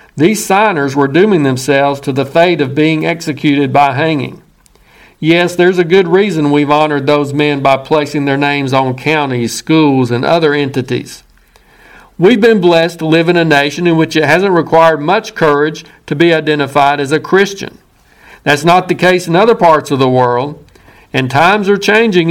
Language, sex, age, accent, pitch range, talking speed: English, male, 50-69, American, 150-190 Hz, 180 wpm